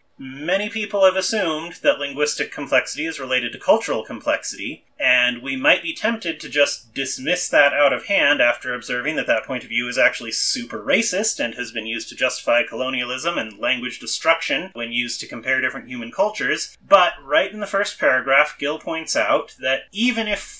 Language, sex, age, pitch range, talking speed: English, male, 30-49, 135-210 Hz, 185 wpm